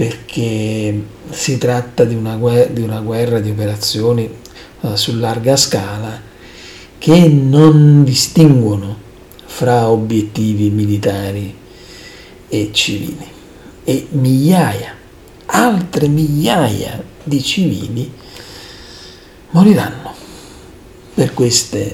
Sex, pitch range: male, 110-145 Hz